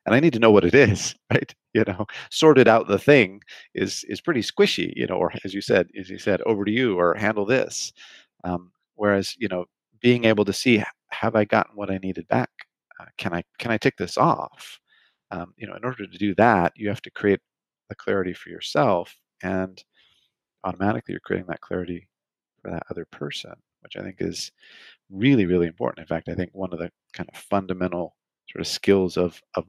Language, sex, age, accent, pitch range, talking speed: English, male, 40-59, American, 90-110 Hz, 210 wpm